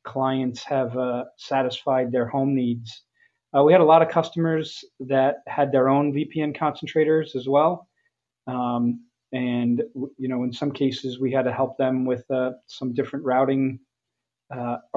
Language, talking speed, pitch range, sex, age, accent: English, 165 wpm, 125-145 Hz, male, 40-59, American